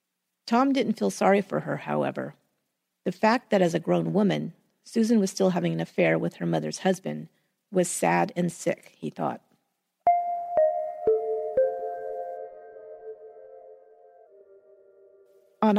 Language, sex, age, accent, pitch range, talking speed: English, female, 40-59, American, 175-220 Hz, 120 wpm